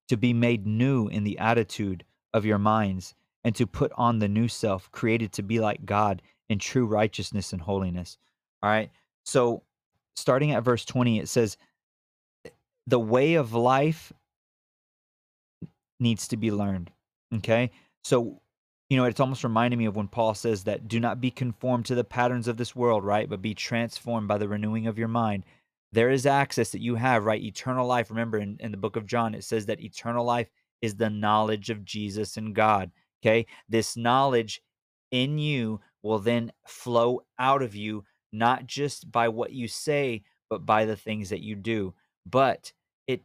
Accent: American